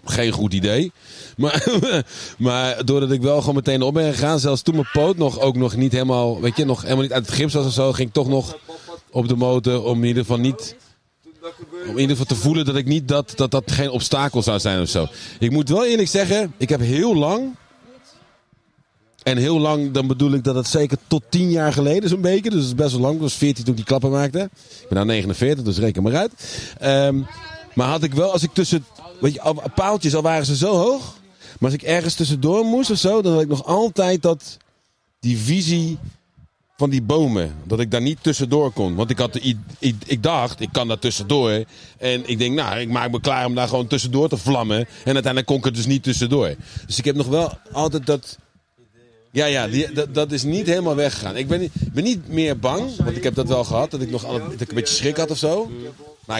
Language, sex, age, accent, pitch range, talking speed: Dutch, male, 40-59, Dutch, 125-155 Hz, 245 wpm